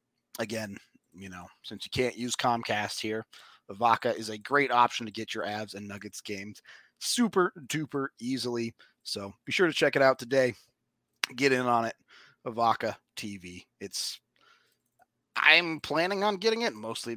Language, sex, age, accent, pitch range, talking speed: English, male, 30-49, American, 105-140 Hz, 155 wpm